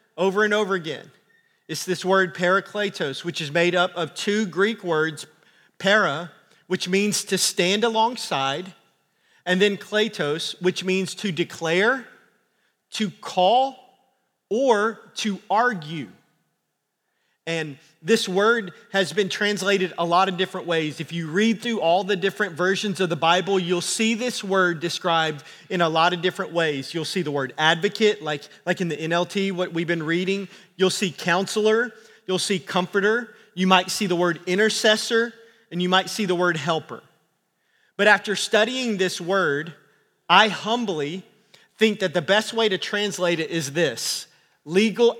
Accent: American